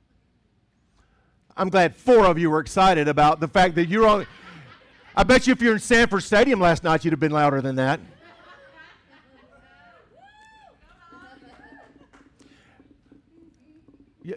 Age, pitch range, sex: 50-69, 130-180 Hz, male